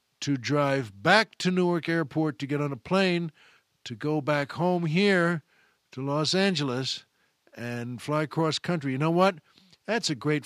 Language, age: English, 50-69